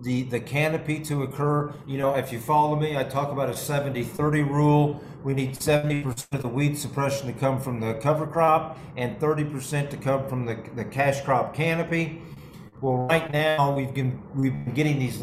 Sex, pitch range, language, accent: male, 135-155 Hz, English, American